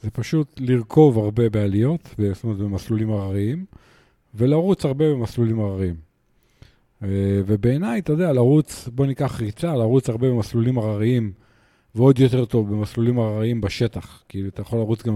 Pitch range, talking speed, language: 105-140 Hz, 140 wpm, Hebrew